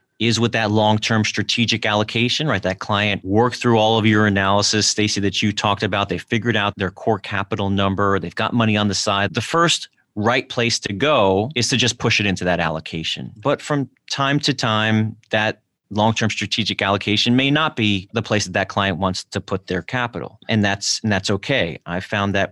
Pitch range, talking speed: 100-120 Hz, 205 wpm